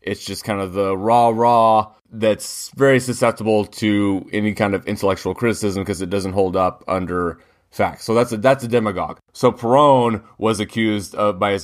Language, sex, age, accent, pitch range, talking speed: English, male, 20-39, American, 95-110 Hz, 185 wpm